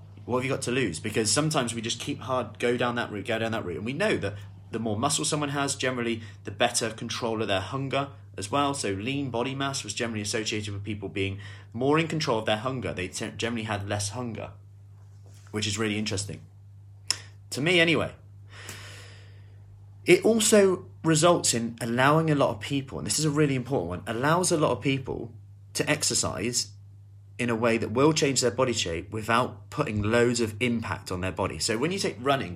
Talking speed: 205 wpm